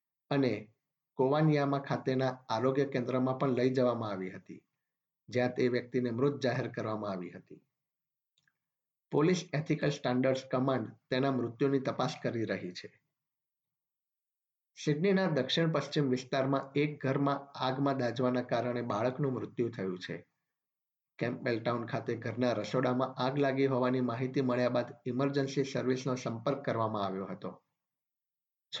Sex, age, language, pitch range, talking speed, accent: male, 50-69, Gujarati, 120-140 Hz, 100 wpm, native